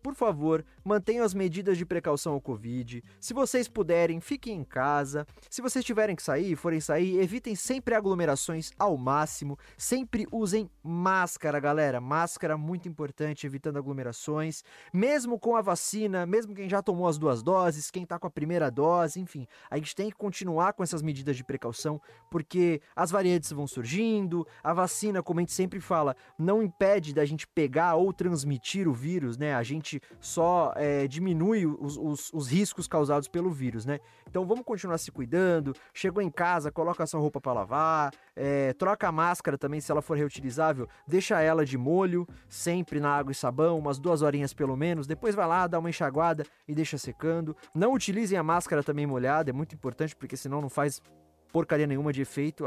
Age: 20-39